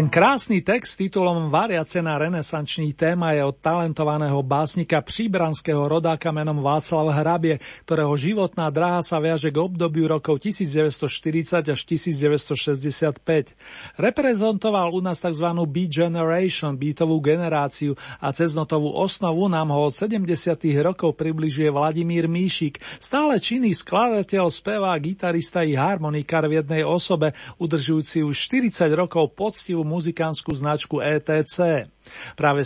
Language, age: Slovak, 40-59